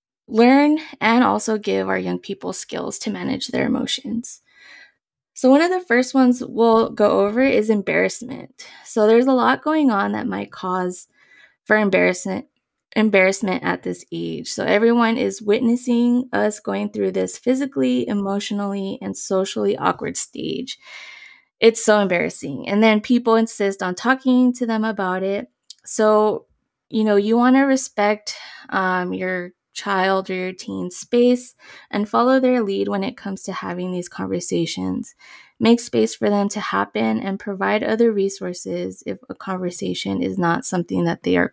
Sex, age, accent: female, 20-39, American